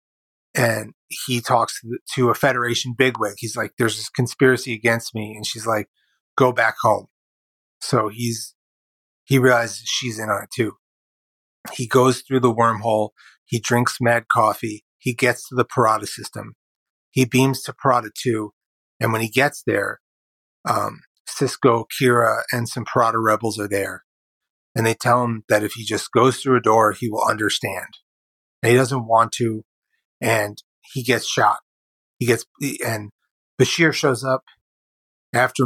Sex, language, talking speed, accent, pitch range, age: male, English, 160 wpm, American, 110-125 Hz, 30-49